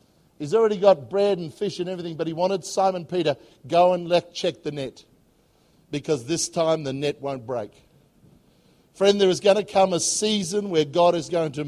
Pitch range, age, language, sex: 155-200 Hz, 50-69, English, male